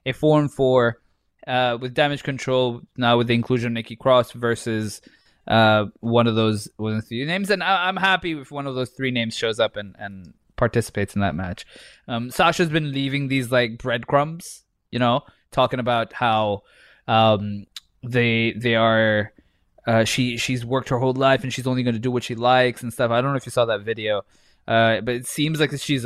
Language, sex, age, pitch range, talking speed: English, male, 20-39, 110-135 Hz, 205 wpm